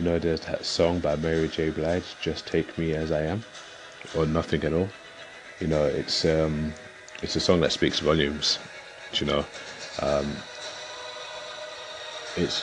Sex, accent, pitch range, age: male, British, 80-95 Hz, 30-49